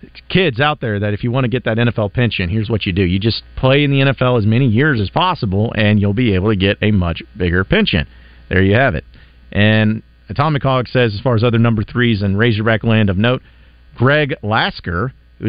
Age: 40-59